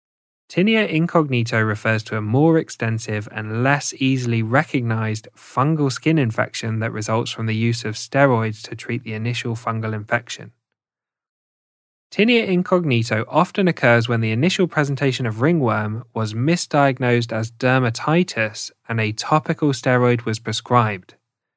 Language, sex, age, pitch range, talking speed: English, male, 10-29, 110-140 Hz, 130 wpm